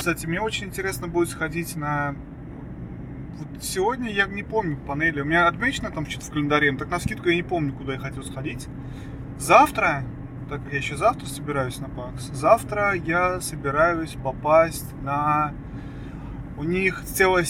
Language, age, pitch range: Russian, 20-39, 135-170 Hz